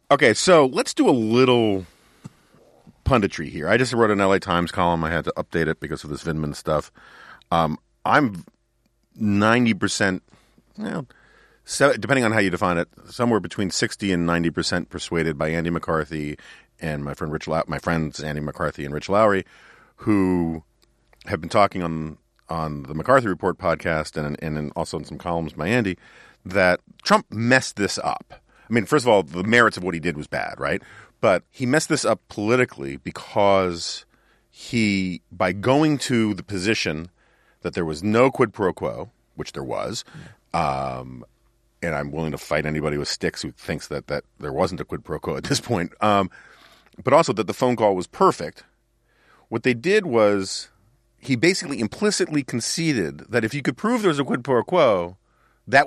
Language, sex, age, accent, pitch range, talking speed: English, male, 40-59, American, 80-120 Hz, 180 wpm